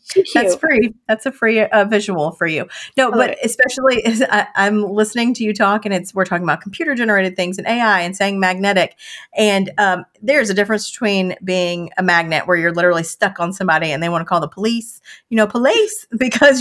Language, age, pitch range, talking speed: English, 30-49, 175-220 Hz, 205 wpm